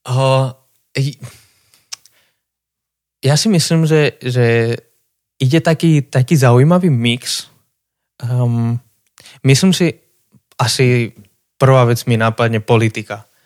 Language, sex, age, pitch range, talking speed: Slovak, male, 20-39, 115-130 Hz, 90 wpm